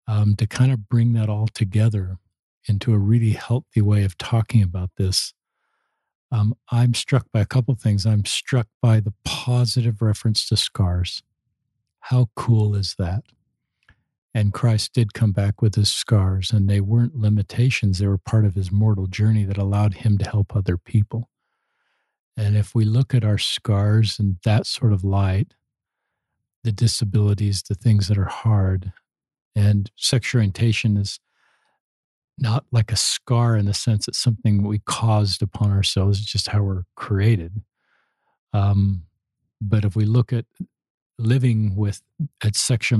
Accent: American